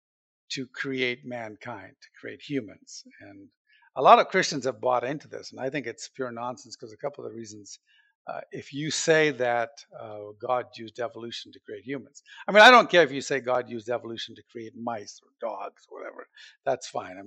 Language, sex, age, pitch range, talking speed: English, male, 50-69, 115-155 Hz, 210 wpm